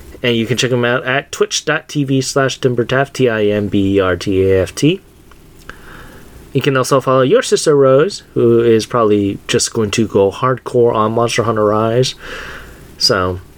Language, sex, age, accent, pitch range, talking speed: English, male, 30-49, American, 105-140 Hz, 135 wpm